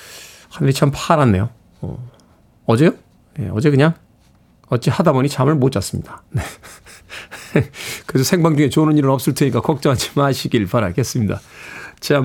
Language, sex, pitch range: Korean, male, 130-165 Hz